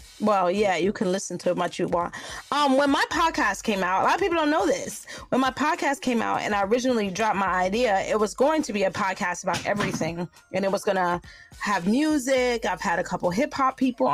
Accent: American